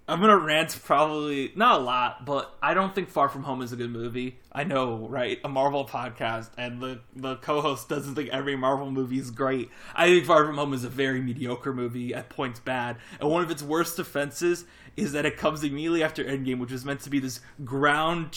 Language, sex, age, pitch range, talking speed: English, male, 20-39, 125-150 Hz, 225 wpm